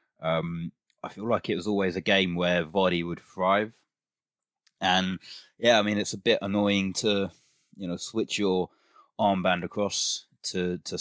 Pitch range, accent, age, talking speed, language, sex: 90-105 Hz, British, 20-39, 165 wpm, English, male